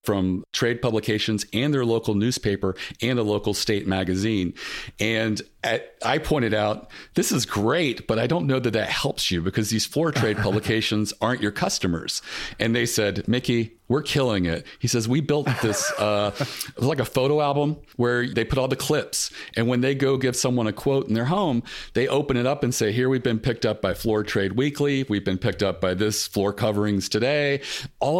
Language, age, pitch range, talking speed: English, 40-59, 100-125 Hz, 200 wpm